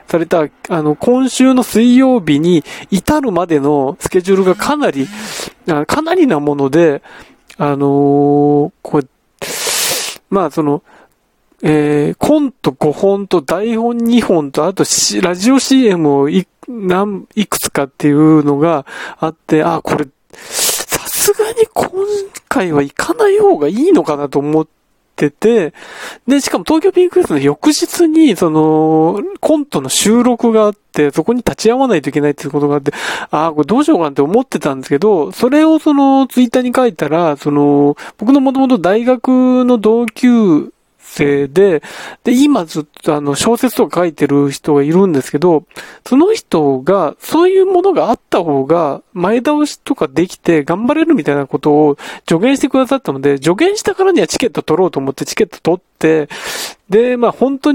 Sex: male